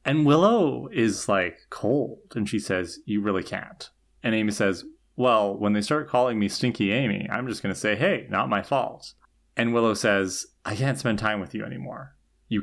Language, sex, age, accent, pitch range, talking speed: English, male, 30-49, American, 100-130 Hz, 200 wpm